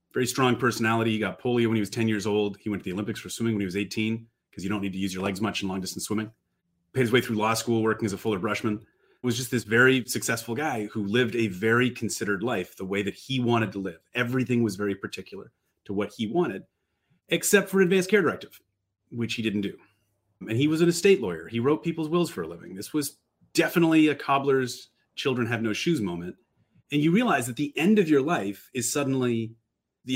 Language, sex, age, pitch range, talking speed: English, male, 30-49, 105-140 Hz, 235 wpm